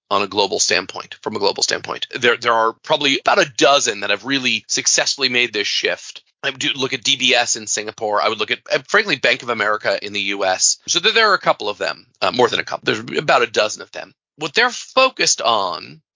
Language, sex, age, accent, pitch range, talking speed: English, male, 30-49, American, 120-155 Hz, 240 wpm